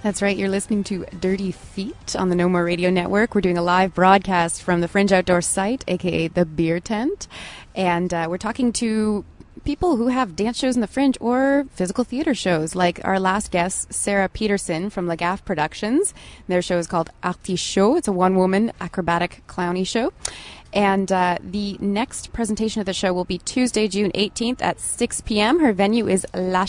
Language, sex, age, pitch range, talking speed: English, female, 20-39, 175-215 Hz, 190 wpm